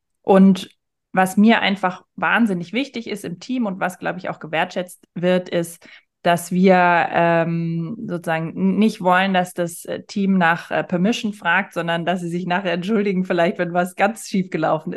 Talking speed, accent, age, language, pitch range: 170 wpm, German, 20-39, German, 170-200 Hz